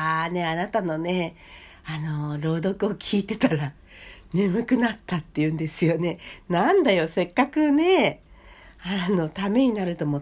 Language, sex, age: Japanese, female, 60-79